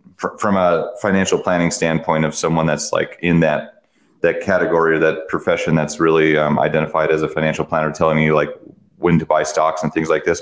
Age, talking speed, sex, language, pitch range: 30-49, 200 wpm, male, English, 80-90 Hz